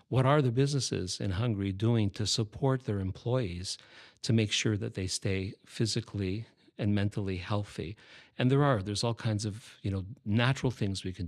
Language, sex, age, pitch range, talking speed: Hungarian, male, 50-69, 100-120 Hz, 180 wpm